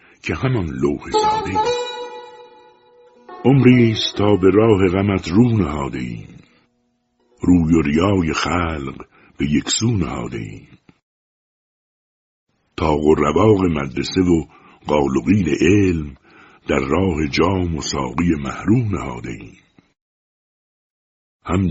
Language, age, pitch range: Persian, 60-79, 70-100 Hz